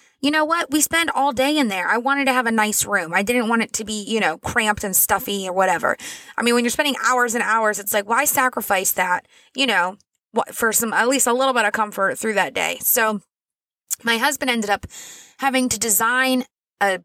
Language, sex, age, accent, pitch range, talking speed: English, female, 20-39, American, 210-250 Hz, 230 wpm